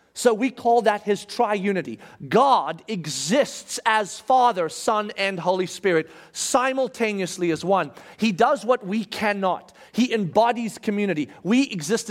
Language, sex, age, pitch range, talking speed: English, male, 40-59, 145-220 Hz, 135 wpm